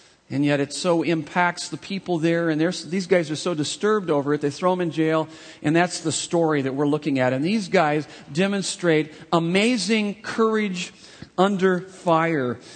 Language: English